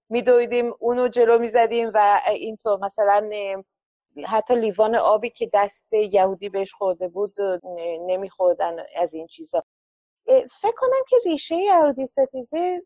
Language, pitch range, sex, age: Persian, 200-260 Hz, female, 30-49